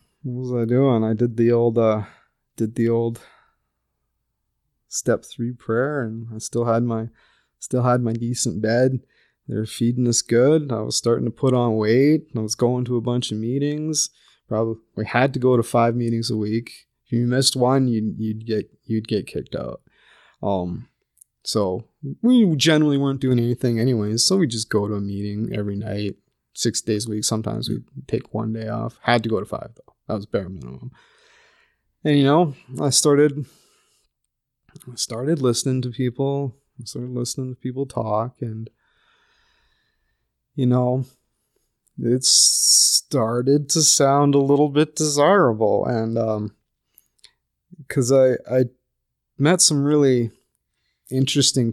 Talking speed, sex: 160 wpm, male